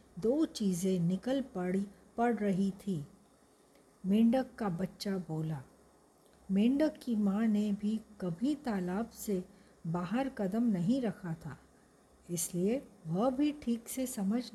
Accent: native